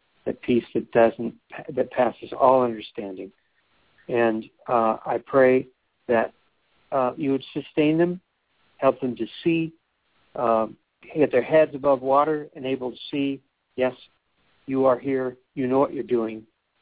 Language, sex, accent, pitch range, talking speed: English, male, American, 110-135 Hz, 145 wpm